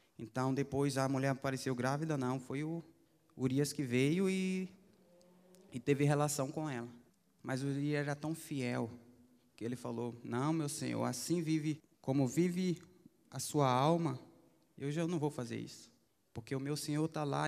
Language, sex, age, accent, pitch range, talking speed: Portuguese, male, 20-39, Brazilian, 130-165 Hz, 170 wpm